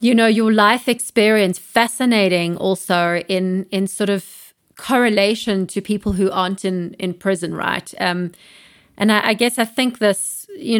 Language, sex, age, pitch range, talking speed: English, female, 30-49, 185-225 Hz, 160 wpm